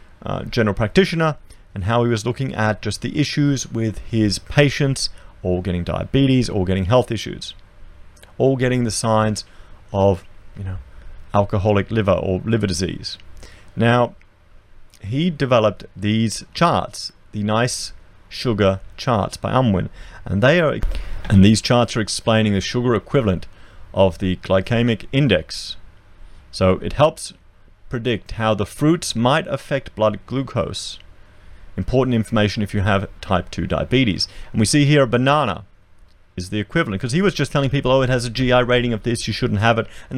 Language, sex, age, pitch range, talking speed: English, male, 30-49, 95-125 Hz, 160 wpm